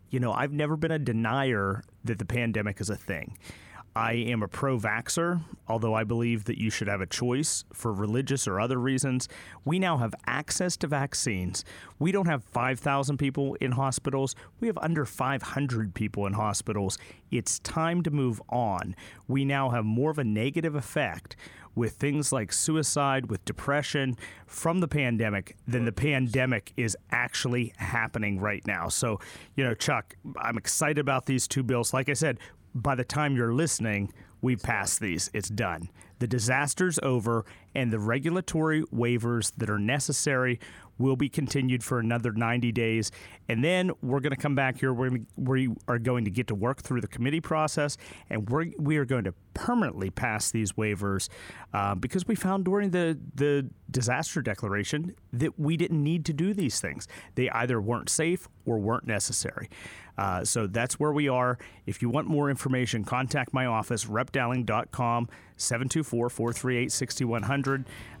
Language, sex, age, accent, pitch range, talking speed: English, male, 40-59, American, 110-140 Hz, 165 wpm